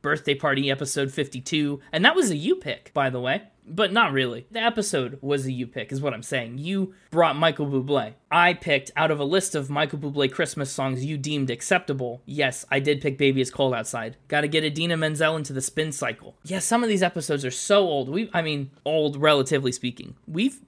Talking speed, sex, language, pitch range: 220 wpm, male, English, 140-180 Hz